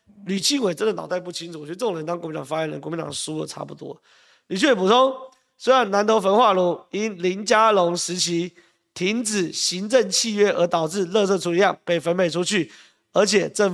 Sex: male